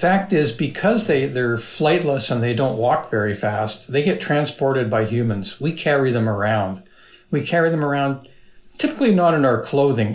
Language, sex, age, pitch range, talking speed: English, male, 60-79, 115-145 Hz, 175 wpm